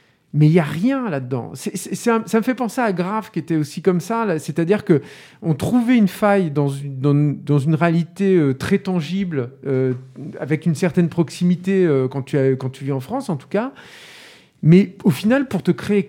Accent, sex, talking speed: French, male, 215 wpm